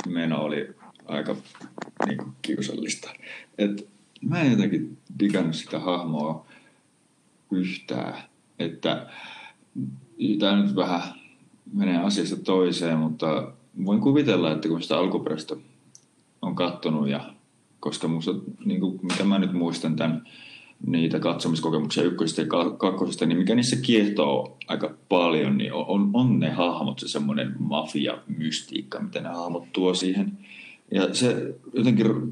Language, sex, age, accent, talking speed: Finnish, male, 30-49, native, 125 wpm